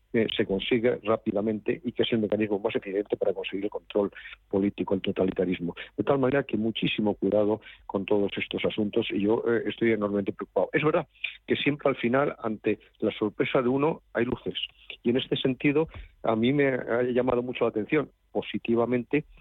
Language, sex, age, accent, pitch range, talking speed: Spanish, male, 50-69, Spanish, 100-125 Hz, 180 wpm